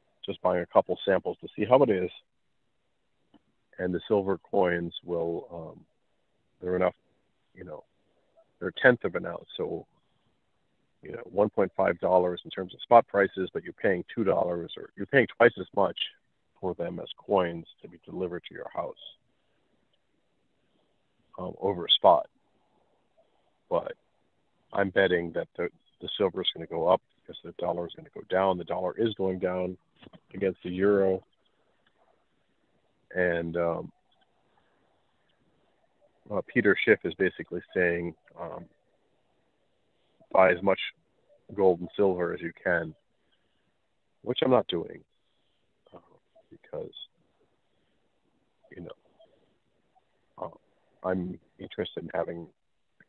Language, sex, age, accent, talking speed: English, male, 40-59, American, 135 wpm